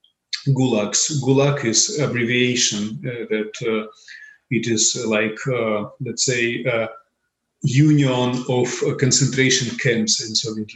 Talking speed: 115 wpm